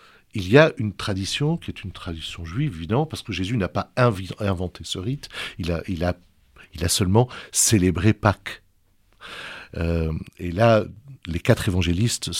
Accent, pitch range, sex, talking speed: French, 90-125 Hz, male, 170 wpm